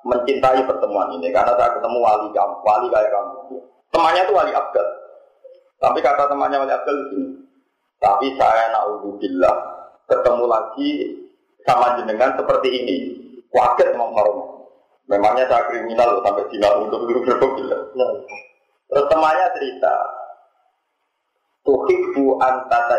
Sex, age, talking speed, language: male, 30-49, 110 wpm, Indonesian